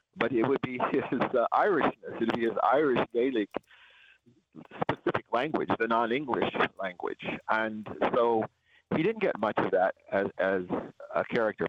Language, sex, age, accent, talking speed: English, male, 50-69, American, 150 wpm